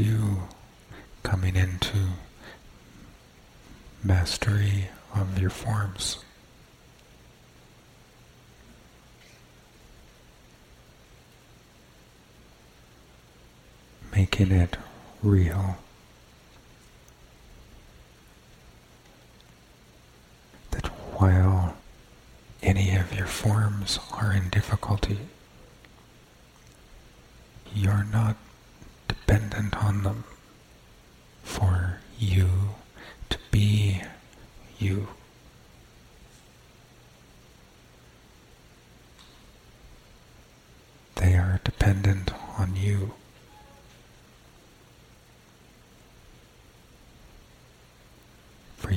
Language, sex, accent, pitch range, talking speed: English, male, American, 90-105 Hz, 45 wpm